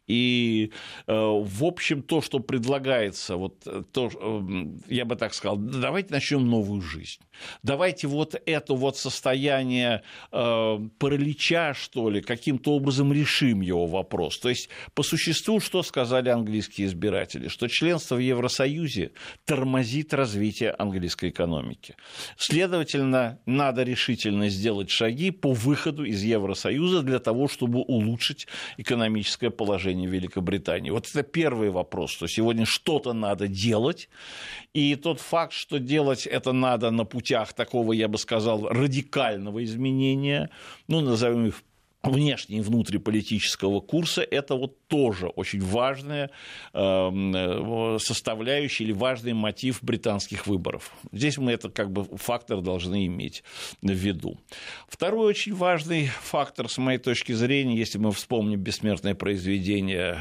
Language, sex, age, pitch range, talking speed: Russian, male, 60-79, 105-140 Hz, 125 wpm